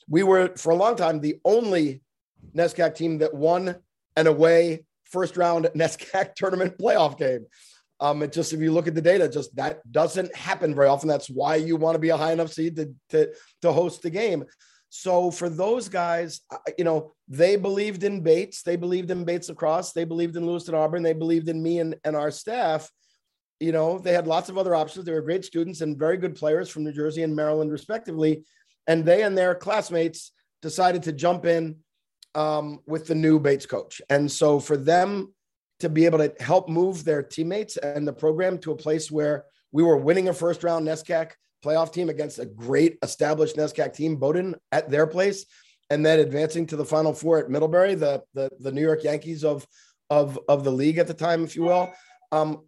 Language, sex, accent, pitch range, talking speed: English, male, American, 155-175 Hz, 205 wpm